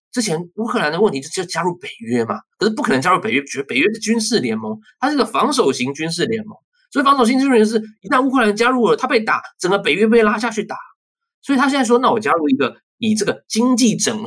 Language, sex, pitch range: Chinese, male, 160-240 Hz